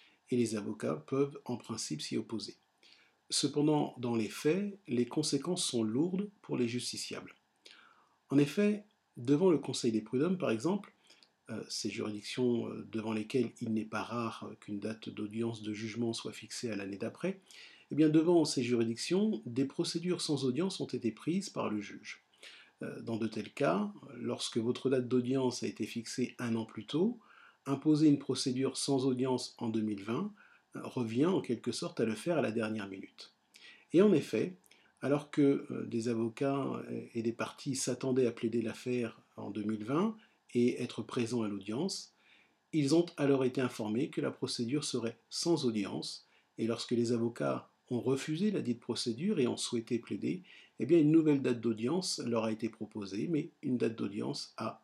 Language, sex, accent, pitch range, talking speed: French, male, French, 115-145 Hz, 165 wpm